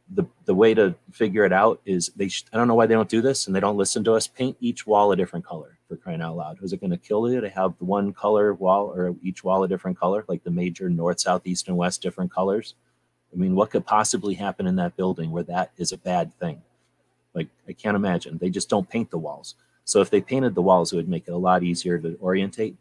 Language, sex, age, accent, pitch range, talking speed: English, male, 30-49, American, 85-100 Hz, 265 wpm